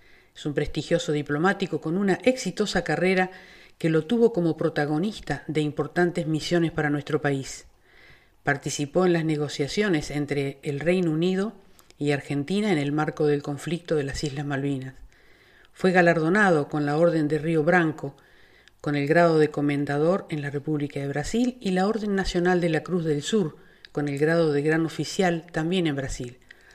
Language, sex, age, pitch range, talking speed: Spanish, female, 50-69, 145-180 Hz, 165 wpm